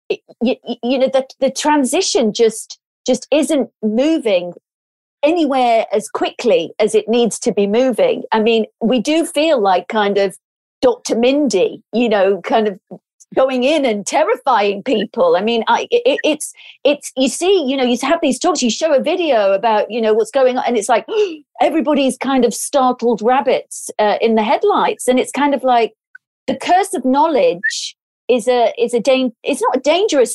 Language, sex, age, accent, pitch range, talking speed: English, female, 40-59, British, 210-300 Hz, 185 wpm